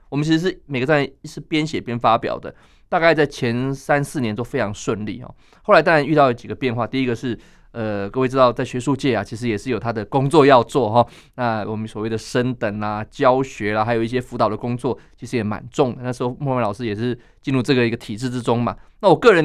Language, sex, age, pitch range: Chinese, male, 20-39, 115-140 Hz